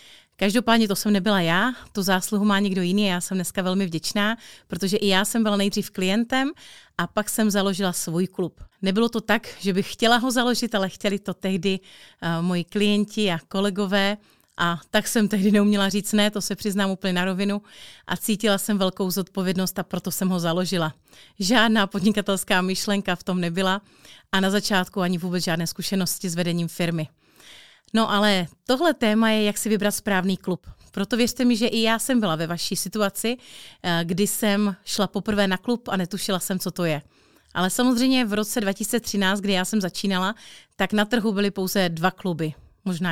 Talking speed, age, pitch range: 185 wpm, 30-49, 185-210 Hz